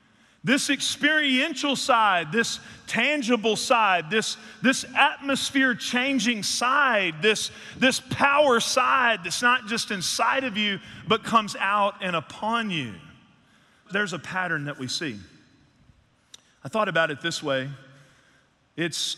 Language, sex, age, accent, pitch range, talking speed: English, male, 40-59, American, 145-230 Hz, 120 wpm